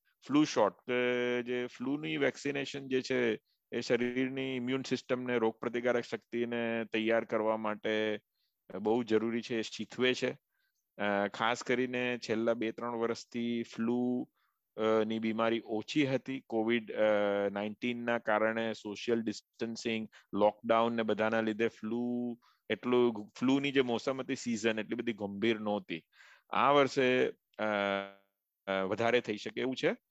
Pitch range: 110-125 Hz